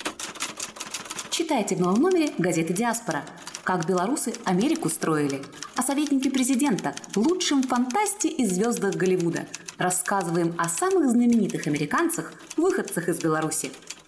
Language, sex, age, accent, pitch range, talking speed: Russian, female, 20-39, native, 195-310 Hz, 110 wpm